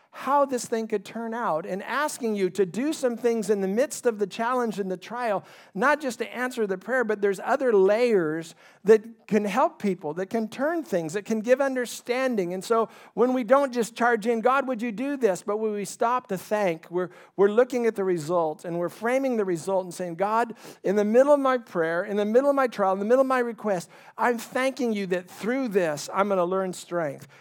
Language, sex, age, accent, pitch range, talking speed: English, male, 50-69, American, 175-235 Hz, 230 wpm